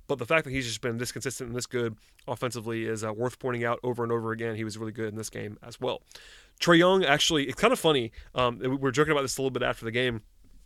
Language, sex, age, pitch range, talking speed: English, male, 30-49, 125-155 Hz, 280 wpm